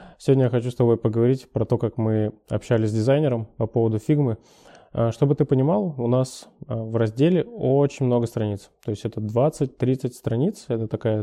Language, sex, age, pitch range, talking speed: Russian, male, 20-39, 115-135 Hz, 175 wpm